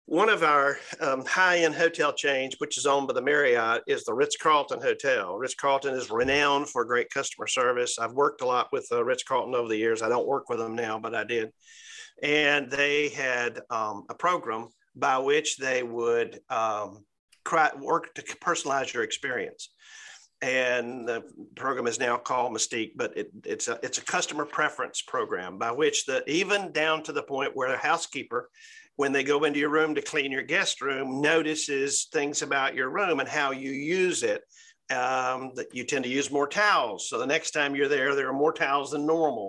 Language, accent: English, American